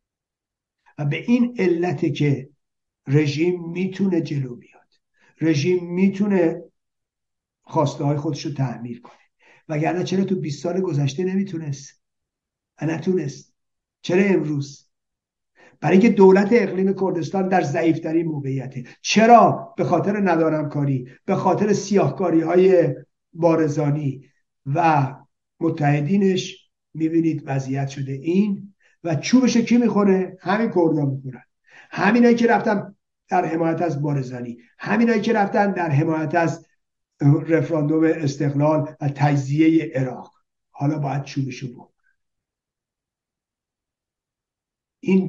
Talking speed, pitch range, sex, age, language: 105 wpm, 145-185 Hz, male, 50-69, Persian